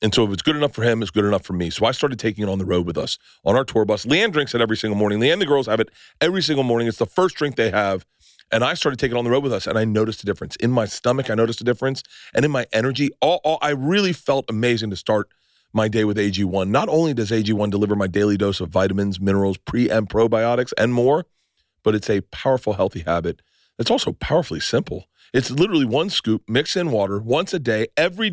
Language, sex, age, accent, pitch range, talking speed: English, male, 40-59, American, 100-130 Hz, 260 wpm